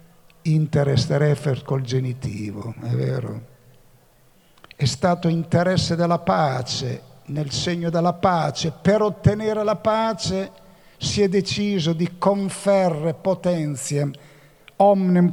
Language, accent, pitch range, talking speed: Italian, native, 135-170 Hz, 100 wpm